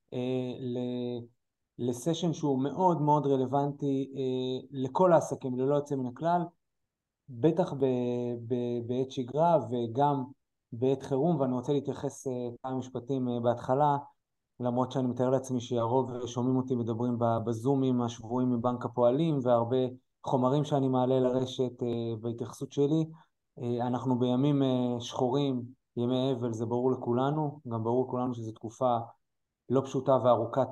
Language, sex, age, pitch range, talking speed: Hebrew, male, 20-39, 120-140 Hz, 125 wpm